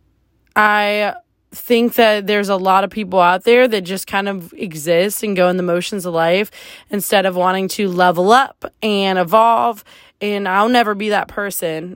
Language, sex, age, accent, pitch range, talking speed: English, female, 20-39, American, 175-205 Hz, 180 wpm